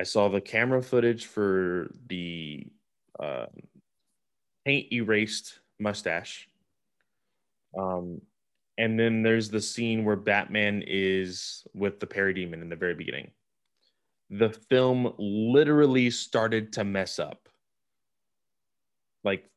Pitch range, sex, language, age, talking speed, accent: 95-115 Hz, male, English, 20-39, 110 wpm, American